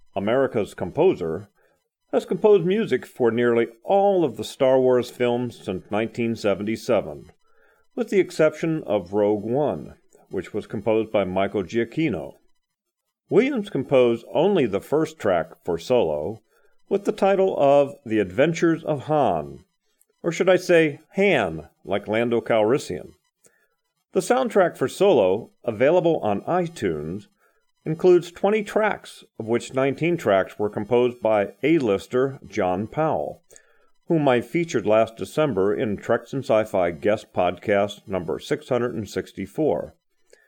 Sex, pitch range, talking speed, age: male, 110-180 Hz, 125 wpm, 40-59